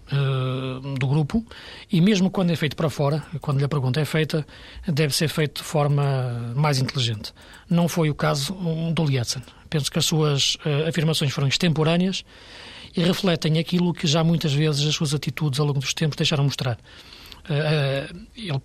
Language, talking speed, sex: Portuguese, 165 wpm, male